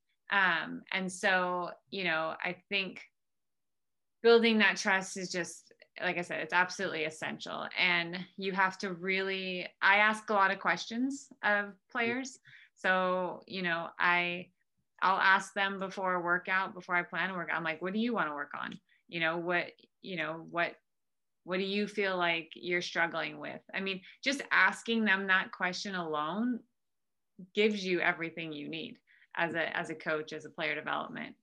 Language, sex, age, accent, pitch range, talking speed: English, female, 20-39, American, 170-195 Hz, 175 wpm